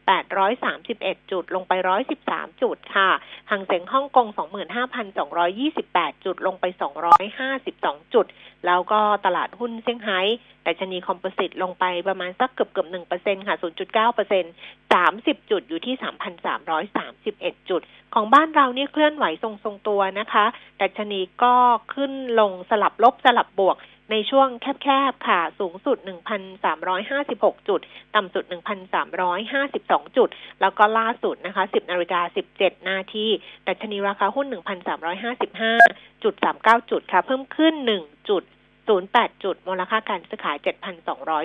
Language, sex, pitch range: Thai, female, 185-250 Hz